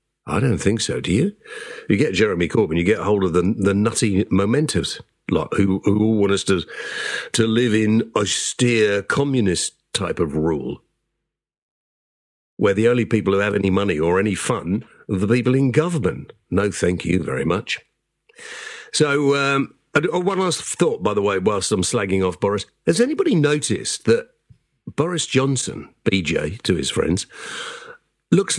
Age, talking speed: 50-69, 165 wpm